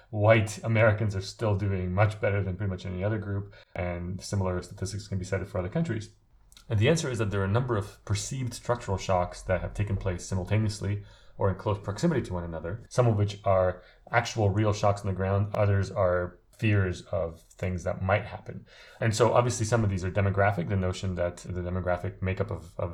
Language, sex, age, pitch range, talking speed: English, male, 30-49, 95-110 Hz, 210 wpm